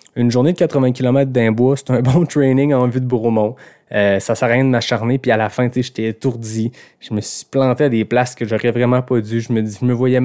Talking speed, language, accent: 265 wpm, French, Canadian